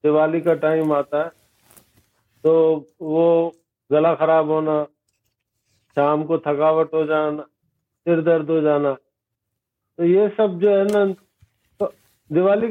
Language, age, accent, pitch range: English, 50-69, Indian, 145-200 Hz